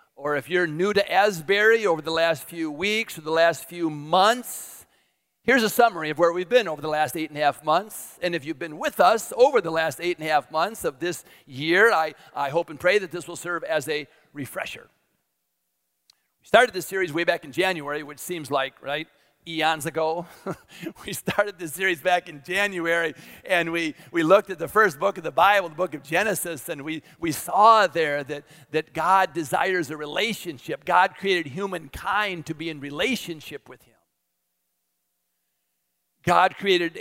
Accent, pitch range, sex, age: American, 155-190 Hz, male, 50-69